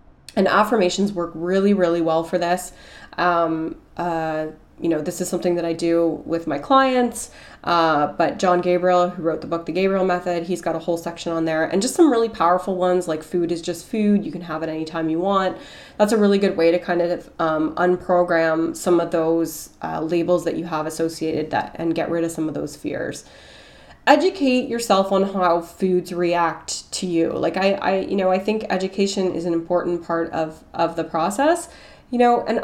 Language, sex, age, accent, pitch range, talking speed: English, female, 20-39, American, 165-195 Hz, 205 wpm